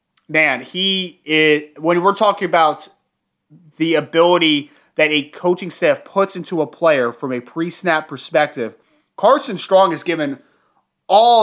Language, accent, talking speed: English, American, 125 wpm